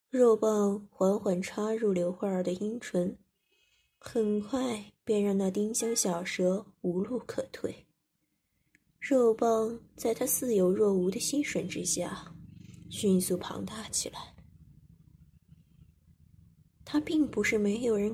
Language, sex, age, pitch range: Chinese, female, 20-39, 185-230 Hz